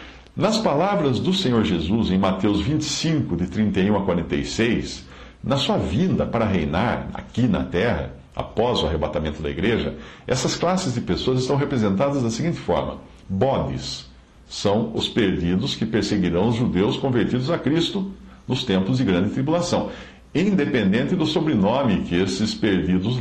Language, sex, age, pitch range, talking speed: English, male, 60-79, 75-115 Hz, 145 wpm